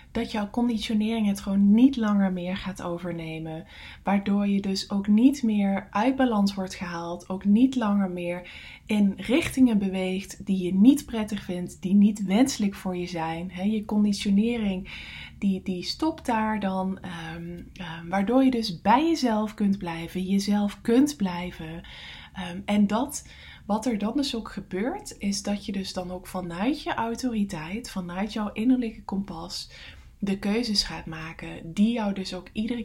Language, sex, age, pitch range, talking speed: English, female, 20-39, 180-220 Hz, 155 wpm